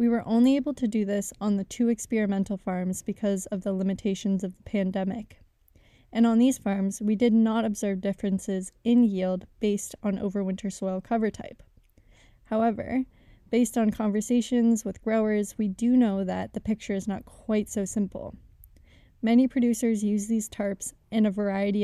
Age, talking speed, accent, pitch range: 10-29, 170 wpm, American, 200-230 Hz